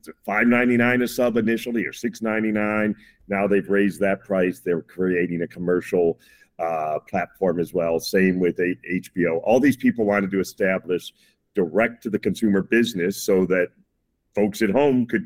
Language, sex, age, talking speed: English, male, 50-69, 175 wpm